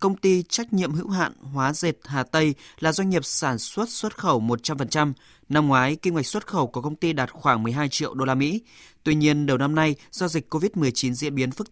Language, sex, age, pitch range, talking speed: Vietnamese, male, 20-39, 130-170 Hz, 230 wpm